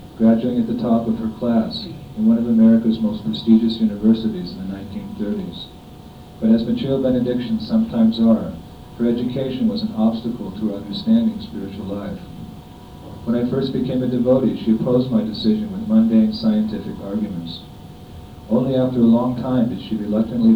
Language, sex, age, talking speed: Hungarian, male, 50-69, 160 wpm